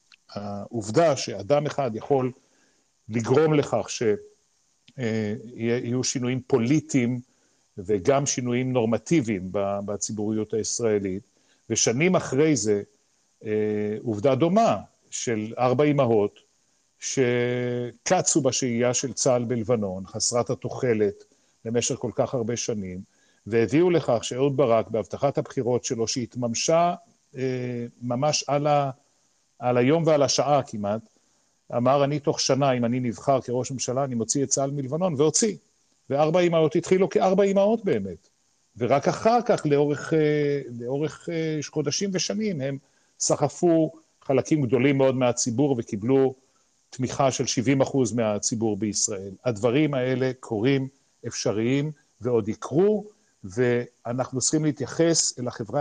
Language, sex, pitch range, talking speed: Hebrew, male, 120-150 Hz, 110 wpm